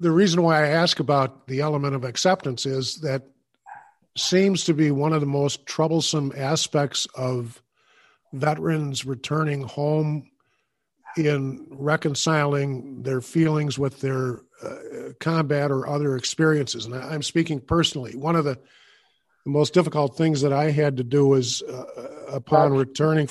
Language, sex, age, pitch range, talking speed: English, male, 50-69, 135-160 Hz, 140 wpm